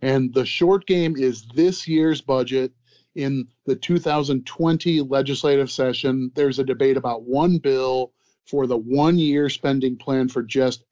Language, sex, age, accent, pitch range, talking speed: English, male, 30-49, American, 130-160 Hz, 145 wpm